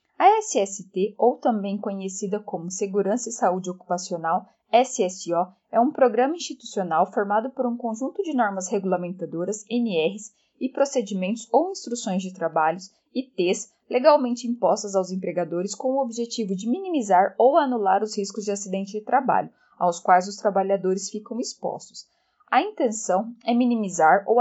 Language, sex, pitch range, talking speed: Portuguese, female, 190-245 Hz, 145 wpm